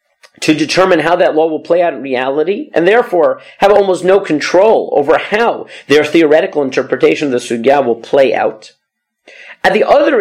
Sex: male